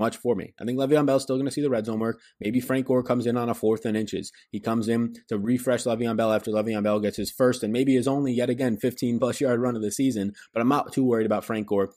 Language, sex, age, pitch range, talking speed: English, male, 20-39, 105-135 Hz, 305 wpm